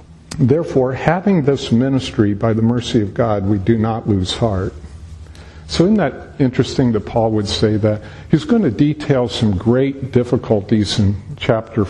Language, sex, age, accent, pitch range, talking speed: English, male, 50-69, American, 110-140 Hz, 160 wpm